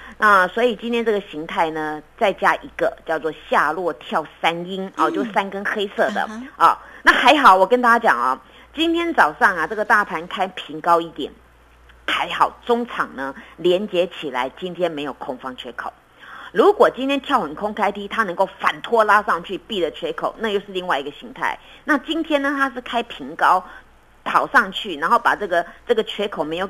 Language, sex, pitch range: Chinese, female, 170-240 Hz